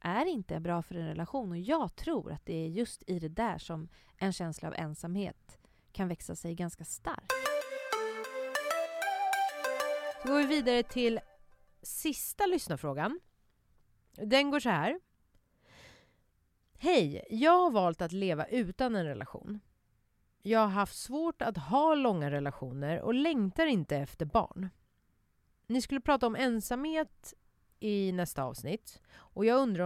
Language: English